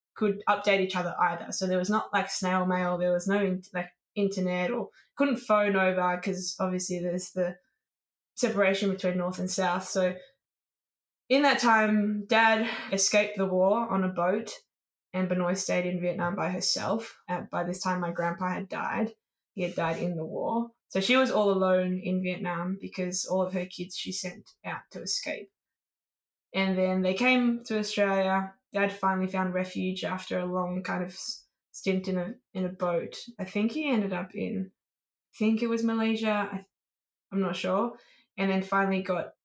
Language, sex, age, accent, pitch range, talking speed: English, female, 10-29, Australian, 185-210 Hz, 180 wpm